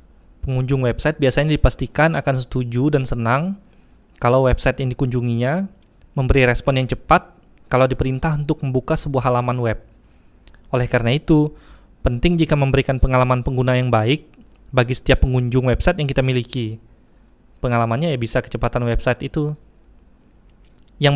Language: Indonesian